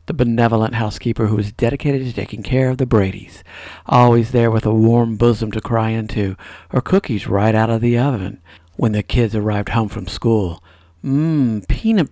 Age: 50-69